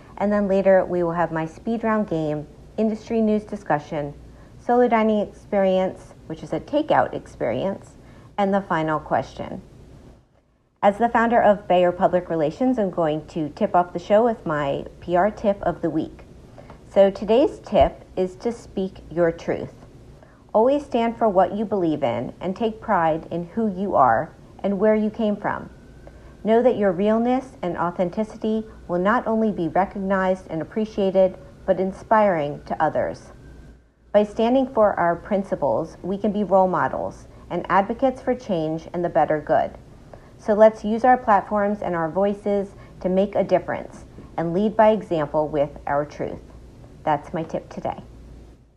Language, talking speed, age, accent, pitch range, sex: English, 160 wpm, 50-69, American, 170-215 Hz, female